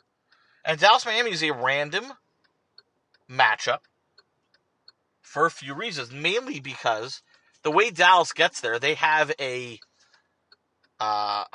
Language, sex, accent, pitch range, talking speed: English, male, American, 125-170 Hz, 110 wpm